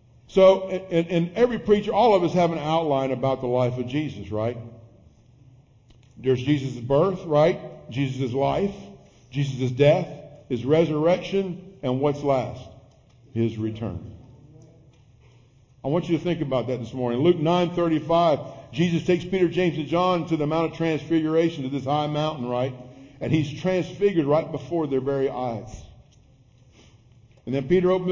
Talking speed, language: 150 wpm, English